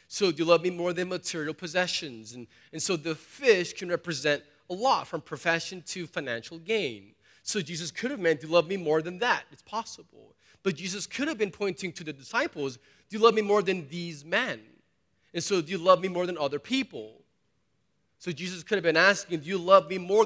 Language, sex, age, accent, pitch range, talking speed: English, male, 30-49, American, 165-205 Hz, 220 wpm